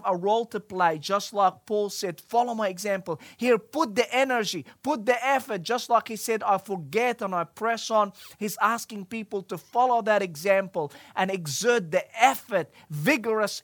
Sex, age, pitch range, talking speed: male, 30-49, 170-215 Hz, 175 wpm